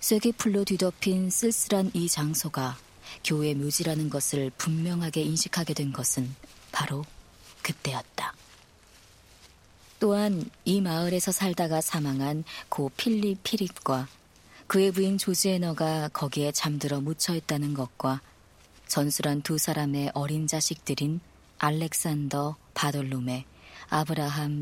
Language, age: Korean, 40-59